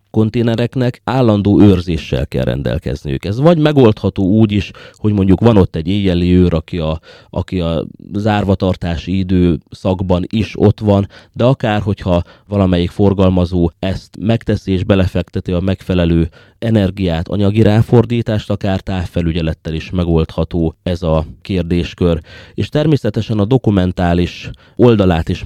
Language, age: Hungarian, 30-49